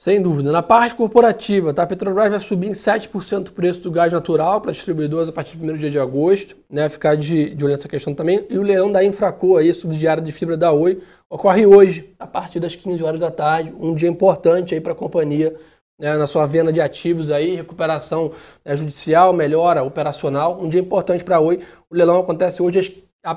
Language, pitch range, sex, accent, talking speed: Portuguese, 160-195 Hz, male, Brazilian, 220 wpm